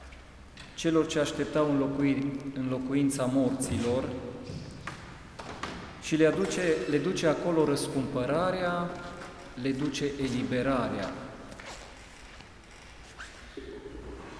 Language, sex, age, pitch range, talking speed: Romanian, male, 40-59, 105-145 Hz, 70 wpm